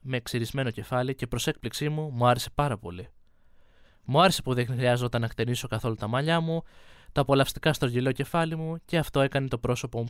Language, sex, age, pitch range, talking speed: Greek, male, 20-39, 110-155 Hz, 200 wpm